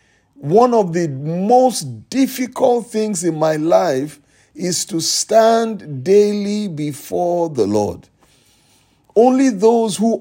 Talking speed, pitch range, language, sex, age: 110 wpm, 165-225 Hz, English, male, 50-69